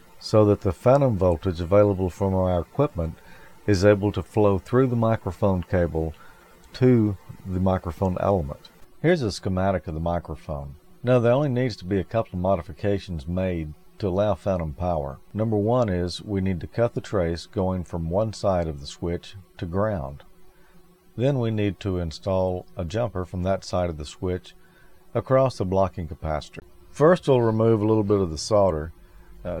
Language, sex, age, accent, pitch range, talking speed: English, male, 50-69, American, 85-105 Hz, 175 wpm